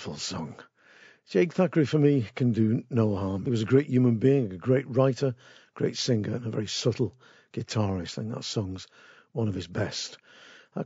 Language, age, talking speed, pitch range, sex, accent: English, 50-69, 180 wpm, 110-135 Hz, male, British